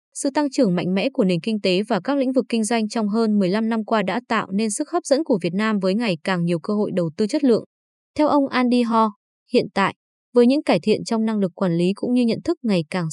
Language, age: Vietnamese, 20-39